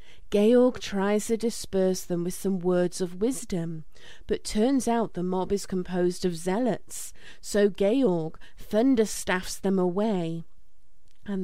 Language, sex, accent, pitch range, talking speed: English, female, British, 185-220 Hz, 130 wpm